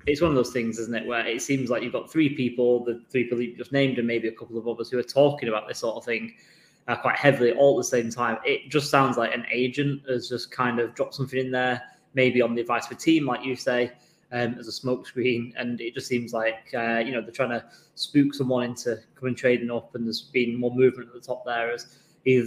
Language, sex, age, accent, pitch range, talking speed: English, male, 20-39, British, 120-130 Hz, 265 wpm